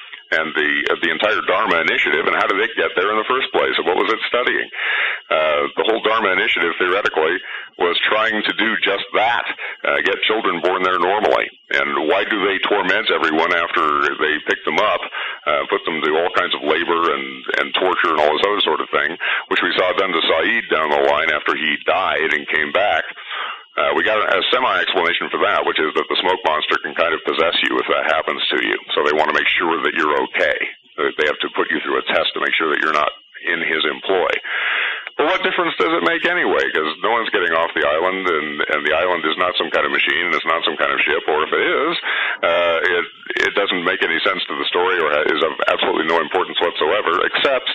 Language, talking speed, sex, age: English, 235 wpm, male, 50-69